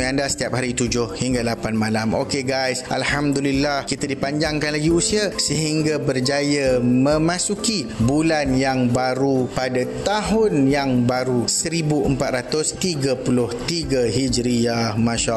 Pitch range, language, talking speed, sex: 125-165 Hz, Malay, 110 wpm, male